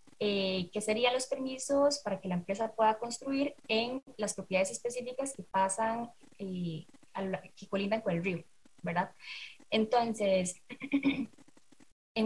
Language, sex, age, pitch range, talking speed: Spanish, female, 10-29, 195-260 Hz, 135 wpm